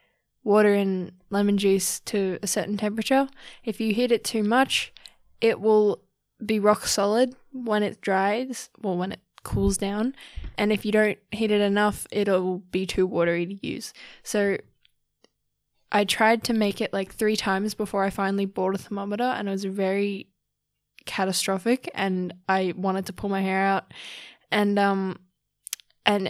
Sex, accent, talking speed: female, Australian, 165 wpm